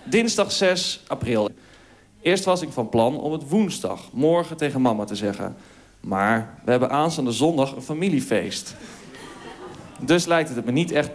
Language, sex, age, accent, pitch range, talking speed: Dutch, male, 40-59, Dutch, 120-165 Hz, 155 wpm